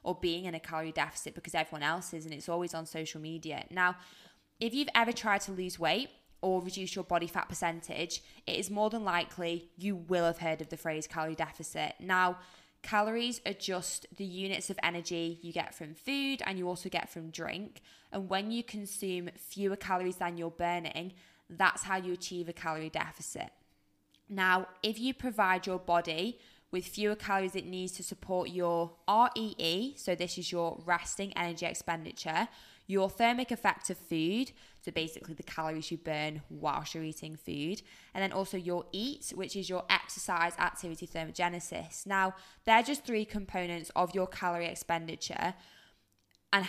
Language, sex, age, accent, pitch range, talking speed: English, female, 20-39, British, 170-195 Hz, 175 wpm